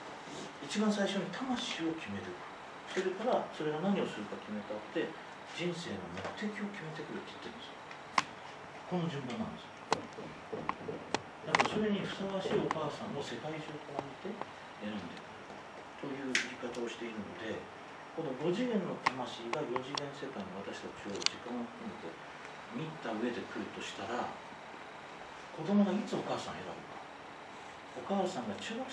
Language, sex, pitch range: English, male, 135-205 Hz